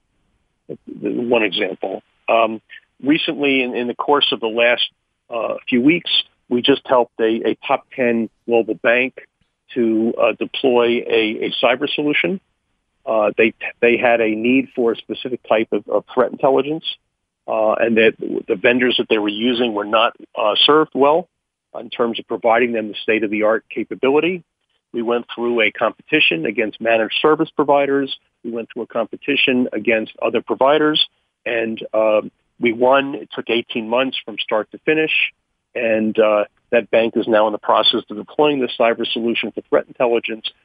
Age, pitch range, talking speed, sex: 50-69, 110-130 Hz, 165 wpm, male